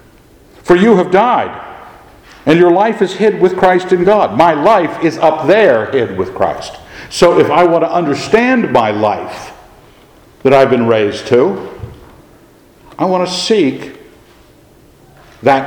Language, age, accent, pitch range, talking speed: English, 60-79, American, 95-165 Hz, 150 wpm